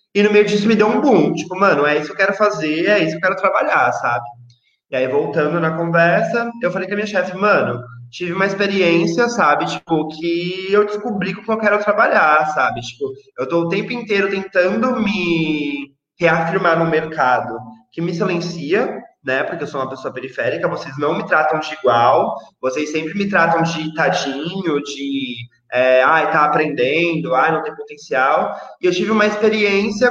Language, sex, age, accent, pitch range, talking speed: Portuguese, male, 20-39, Brazilian, 155-210 Hz, 190 wpm